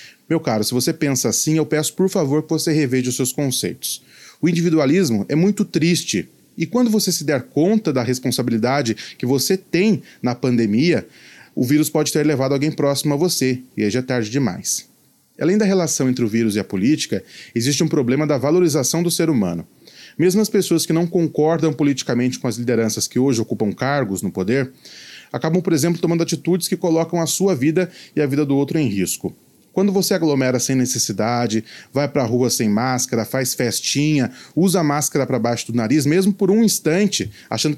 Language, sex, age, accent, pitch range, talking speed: Portuguese, male, 30-49, Brazilian, 125-170 Hz, 195 wpm